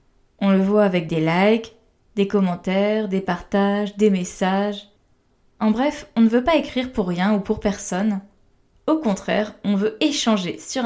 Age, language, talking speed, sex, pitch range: 20-39, French, 165 wpm, female, 195-235 Hz